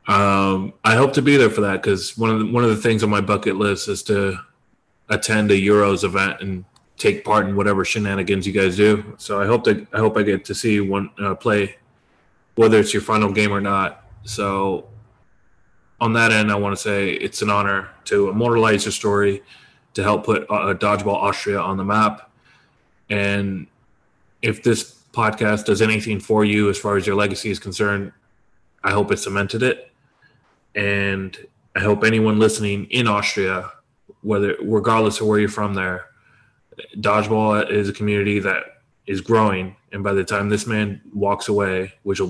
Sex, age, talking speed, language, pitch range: male, 20-39, 185 wpm, English, 100-110 Hz